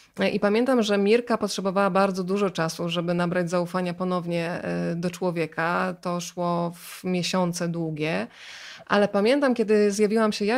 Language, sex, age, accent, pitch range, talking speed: Polish, female, 20-39, native, 185-230 Hz, 140 wpm